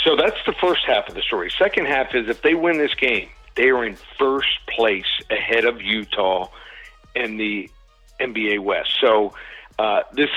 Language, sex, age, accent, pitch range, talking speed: English, male, 60-79, American, 125-155 Hz, 180 wpm